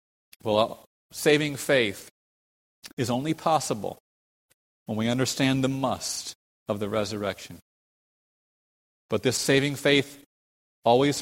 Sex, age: male, 30-49